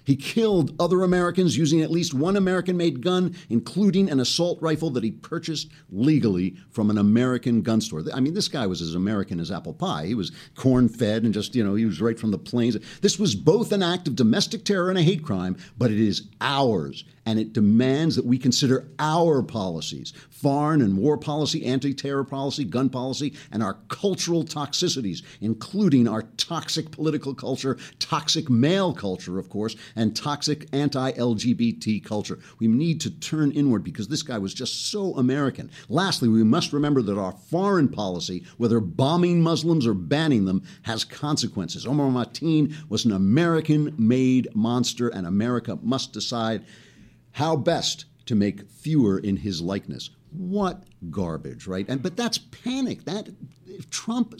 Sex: male